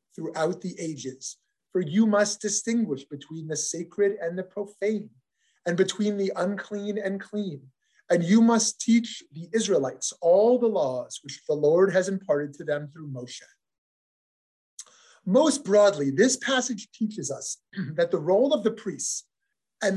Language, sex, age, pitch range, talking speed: English, male, 30-49, 150-220 Hz, 150 wpm